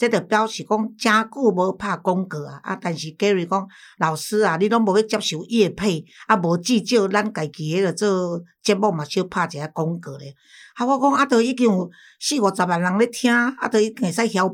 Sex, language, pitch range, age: female, Chinese, 170-220 Hz, 60-79